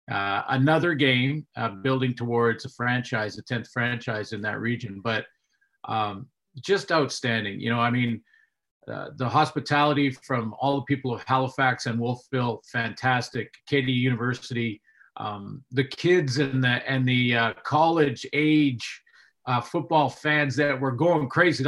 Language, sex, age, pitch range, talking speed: English, male, 40-59, 120-150 Hz, 145 wpm